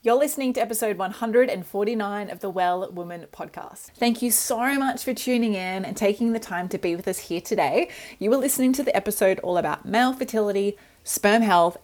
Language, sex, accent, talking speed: English, female, Australian, 200 wpm